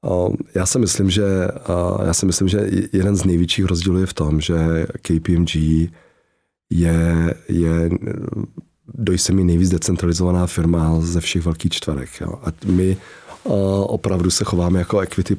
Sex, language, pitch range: male, Czech, 85-90 Hz